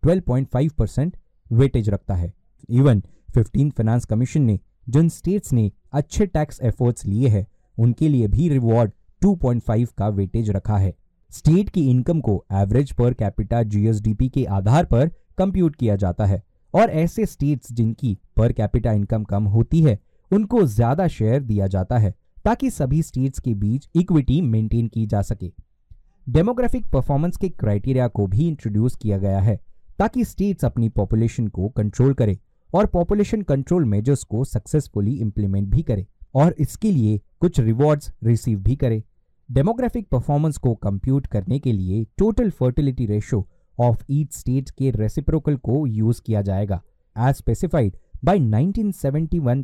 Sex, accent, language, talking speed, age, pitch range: male, native, Hindi, 90 wpm, 20-39, 105-145 Hz